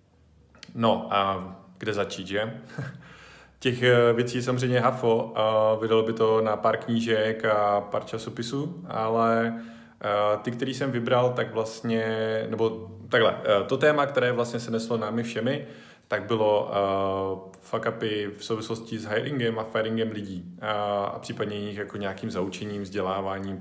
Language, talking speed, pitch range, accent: Czech, 135 wpm, 105-120 Hz, native